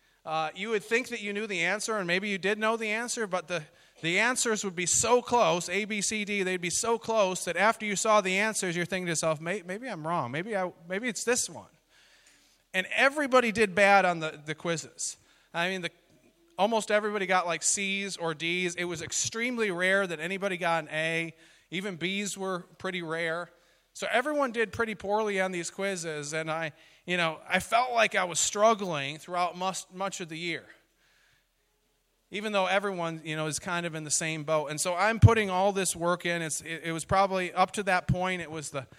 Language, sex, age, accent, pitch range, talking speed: English, male, 30-49, American, 165-205 Hz, 210 wpm